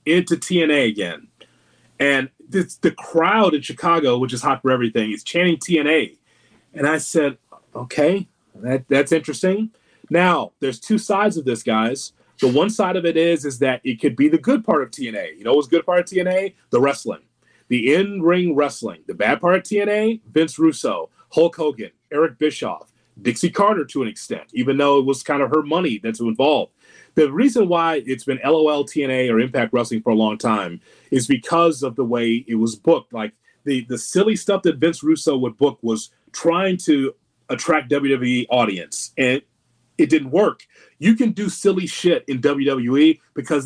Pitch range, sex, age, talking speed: 135-175 Hz, male, 30-49, 185 wpm